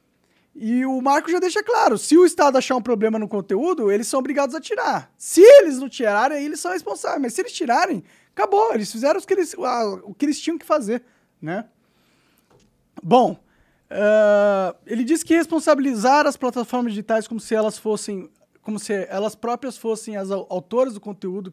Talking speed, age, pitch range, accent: 185 wpm, 20-39, 215-290 Hz, Brazilian